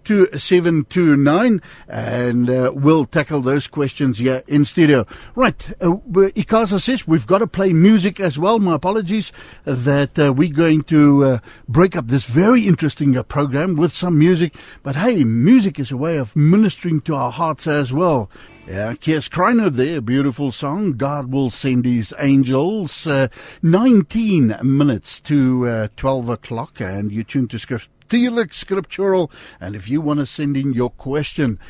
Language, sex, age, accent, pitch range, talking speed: English, male, 60-79, Dutch, 140-195 Hz, 165 wpm